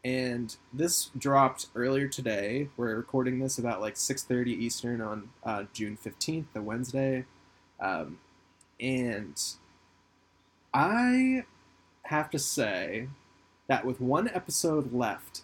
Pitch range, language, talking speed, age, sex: 115-140 Hz, English, 115 wpm, 20-39, male